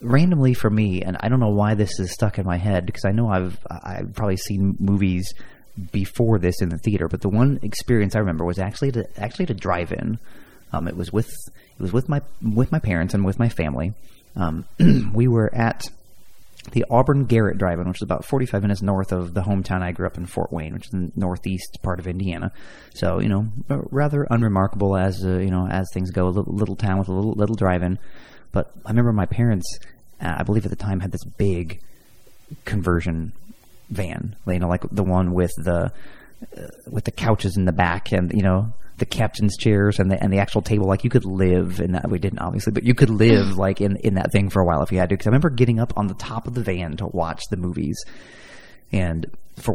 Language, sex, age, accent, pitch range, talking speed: English, male, 30-49, American, 90-110 Hz, 230 wpm